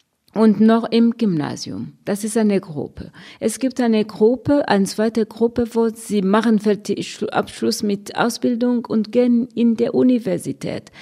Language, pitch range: German, 190-235 Hz